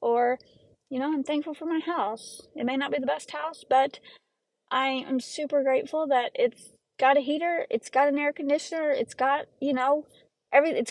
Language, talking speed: English, 195 wpm